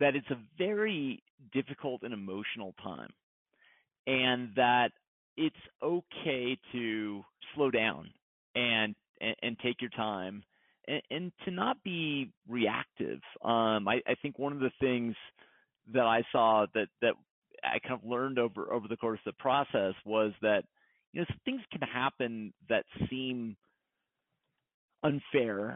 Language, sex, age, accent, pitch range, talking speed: English, male, 40-59, American, 105-130 Hz, 140 wpm